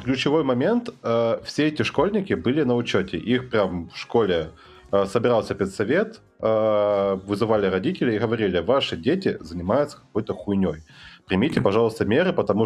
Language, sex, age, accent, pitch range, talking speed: Russian, male, 30-49, native, 95-120 Hz, 130 wpm